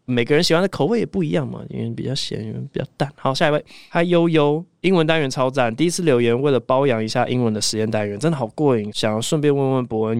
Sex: male